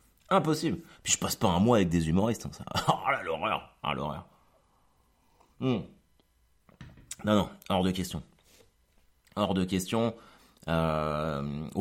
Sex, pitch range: male, 85-130 Hz